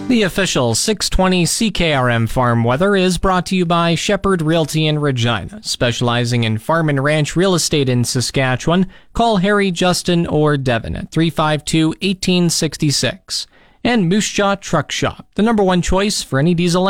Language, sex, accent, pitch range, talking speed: English, male, American, 130-180 Hz, 155 wpm